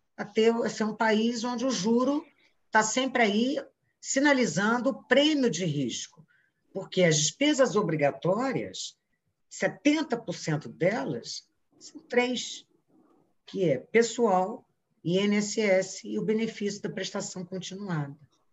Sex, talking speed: female, 105 wpm